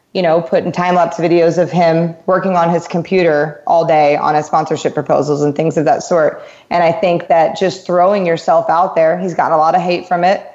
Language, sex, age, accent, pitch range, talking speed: English, female, 20-39, American, 165-190 Hz, 220 wpm